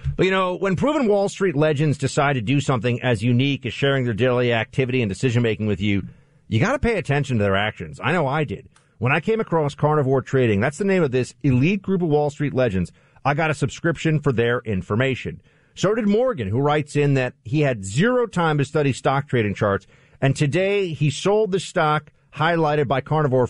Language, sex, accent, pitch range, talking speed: English, male, American, 125-170 Hz, 215 wpm